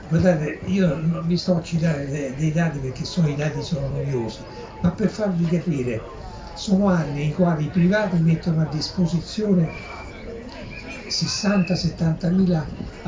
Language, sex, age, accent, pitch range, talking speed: Italian, male, 60-79, native, 130-175 Hz, 140 wpm